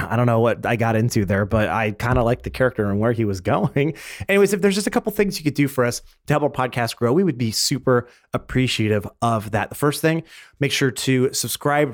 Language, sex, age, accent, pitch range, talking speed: English, male, 30-49, American, 120-155 Hz, 255 wpm